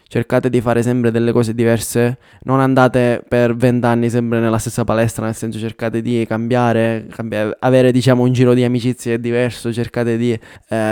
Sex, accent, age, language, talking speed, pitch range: male, native, 20-39, Italian, 170 wpm, 115-125 Hz